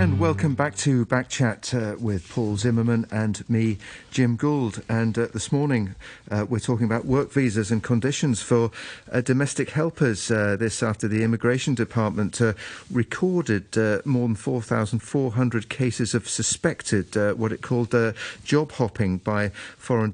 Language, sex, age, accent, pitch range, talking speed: English, male, 50-69, British, 110-130 Hz, 155 wpm